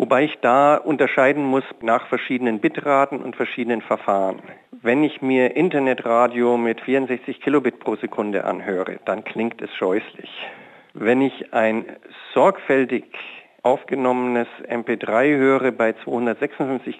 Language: German